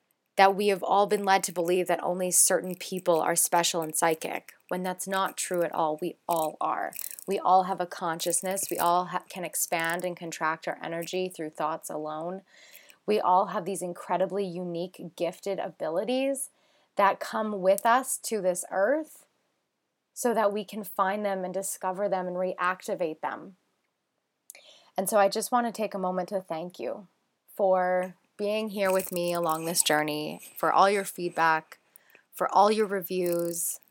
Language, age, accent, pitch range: English, 20-39, American, 170-195 Hz